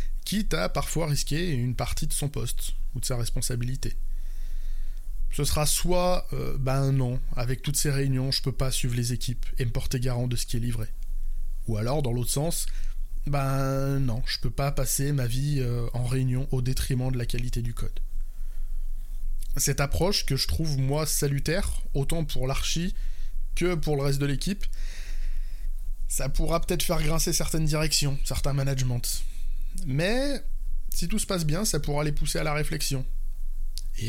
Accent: French